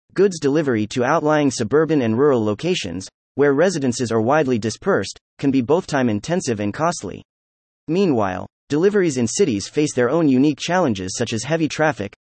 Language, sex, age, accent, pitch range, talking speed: English, male, 30-49, American, 110-160 Hz, 160 wpm